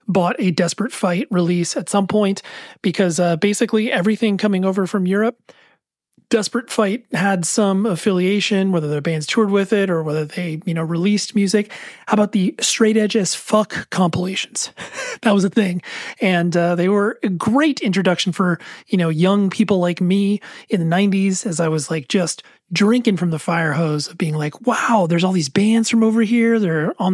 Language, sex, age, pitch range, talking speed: English, male, 30-49, 175-215 Hz, 190 wpm